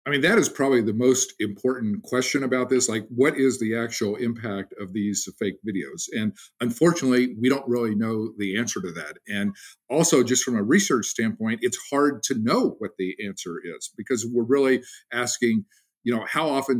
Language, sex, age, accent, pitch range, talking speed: English, male, 50-69, American, 110-130 Hz, 195 wpm